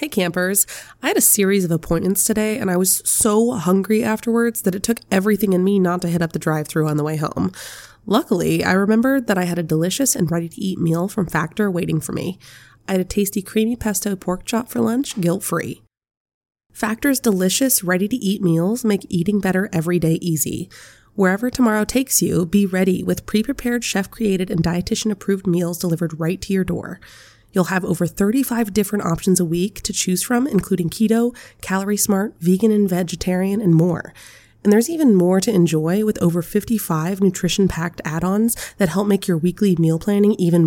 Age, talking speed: 20-39, 185 wpm